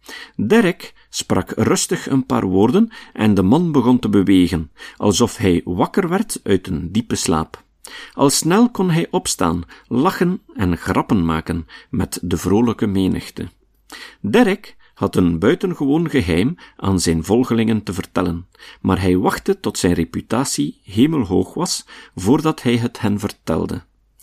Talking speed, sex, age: 140 wpm, male, 50-69